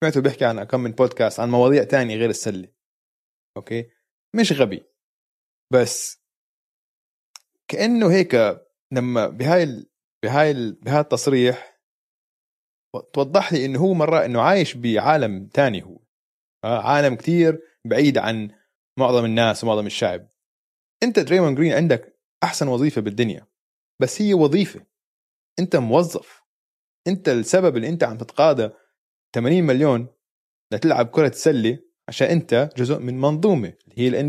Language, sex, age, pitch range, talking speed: Arabic, male, 20-39, 115-165 Hz, 125 wpm